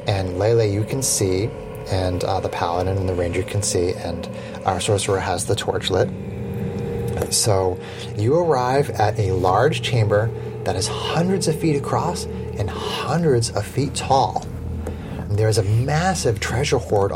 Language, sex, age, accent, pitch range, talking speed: English, male, 30-49, American, 100-140 Hz, 155 wpm